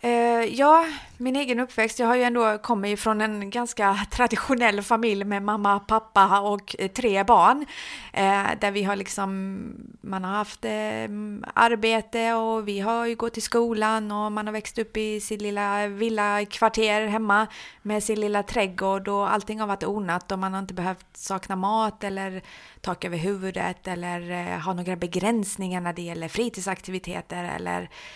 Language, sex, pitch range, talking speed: Swedish, female, 180-225 Hz, 160 wpm